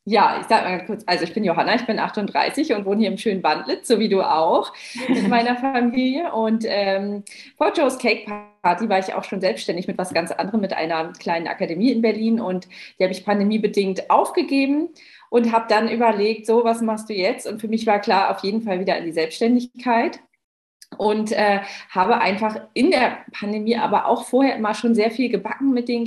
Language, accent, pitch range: German, German, 205-240 Hz